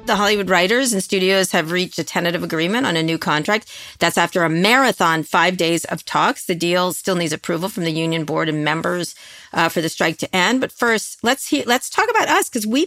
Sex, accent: female, American